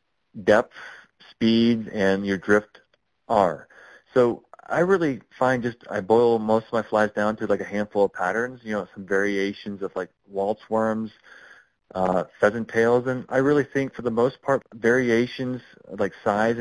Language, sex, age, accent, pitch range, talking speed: English, male, 40-59, American, 105-125 Hz, 165 wpm